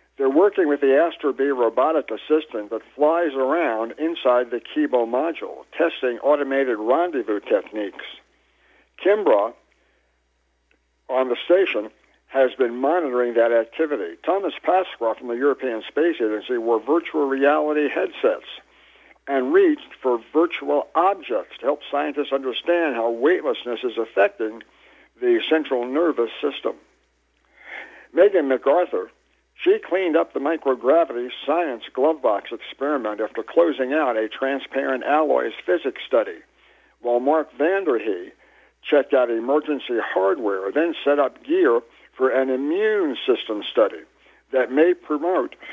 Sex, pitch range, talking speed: male, 120-185 Hz, 120 wpm